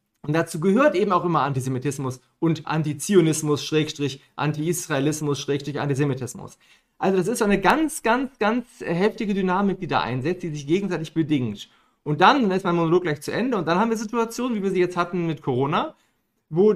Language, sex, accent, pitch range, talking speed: German, male, German, 145-185 Hz, 185 wpm